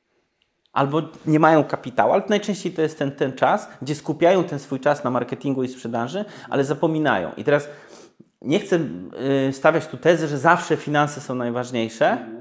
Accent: native